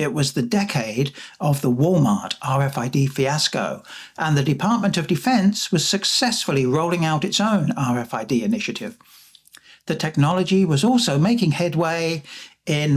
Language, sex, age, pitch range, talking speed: English, male, 60-79, 145-200 Hz, 135 wpm